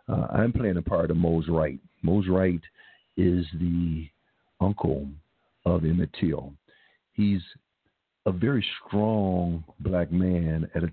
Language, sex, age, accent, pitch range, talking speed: English, male, 50-69, American, 85-95 Hz, 130 wpm